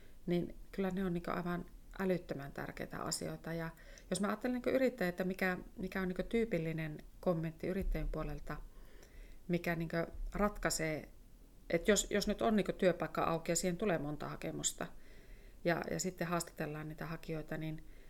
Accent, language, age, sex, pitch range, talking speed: native, Finnish, 30-49, female, 160-190 Hz, 135 wpm